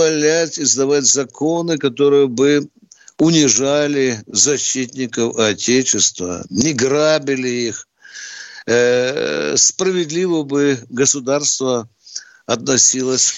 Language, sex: Russian, male